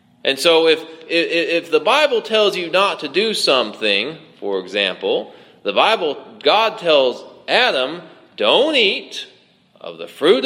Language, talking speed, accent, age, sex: English, 140 wpm, American, 30-49, male